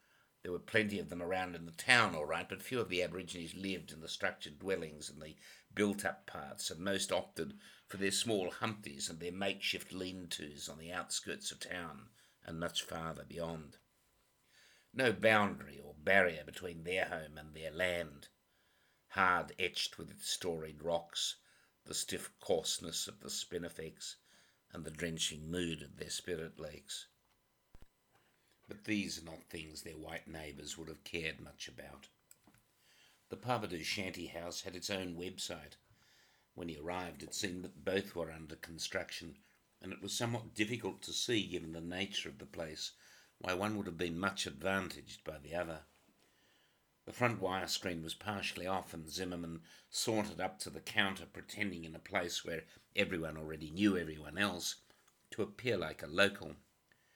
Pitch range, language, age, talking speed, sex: 80-95 Hz, English, 60-79, 165 wpm, male